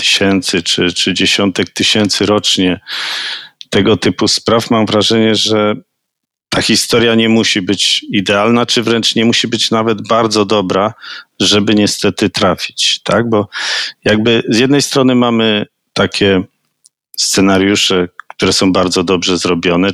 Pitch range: 95-115 Hz